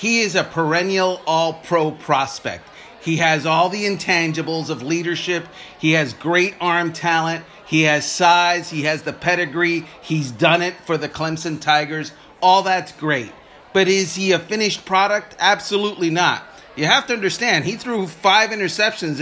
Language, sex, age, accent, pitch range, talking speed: English, male, 30-49, American, 155-190 Hz, 160 wpm